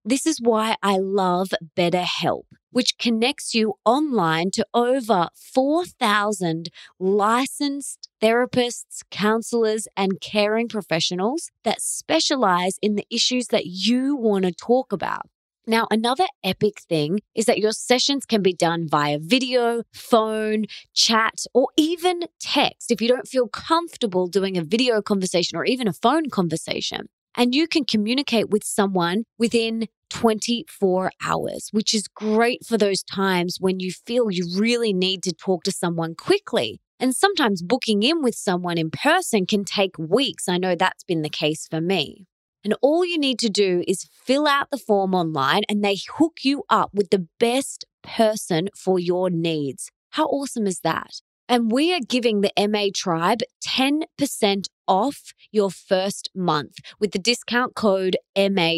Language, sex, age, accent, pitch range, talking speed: English, female, 20-39, Australian, 185-245 Hz, 155 wpm